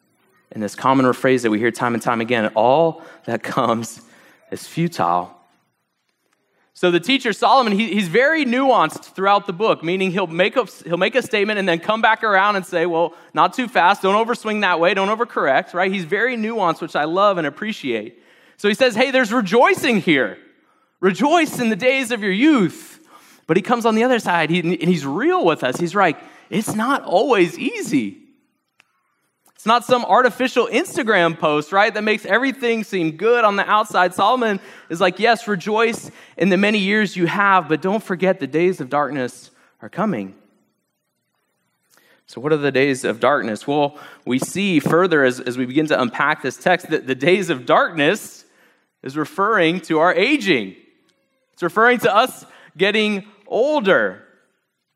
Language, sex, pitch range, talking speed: English, male, 160-230 Hz, 180 wpm